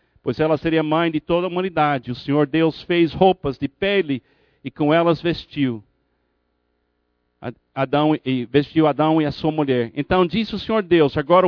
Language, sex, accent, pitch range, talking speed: Portuguese, male, Brazilian, 145-205 Hz, 160 wpm